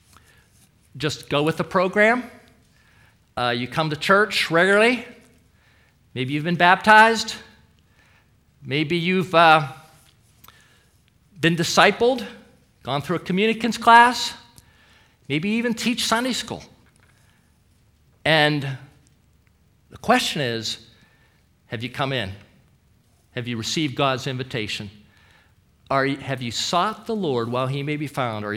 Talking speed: 120 wpm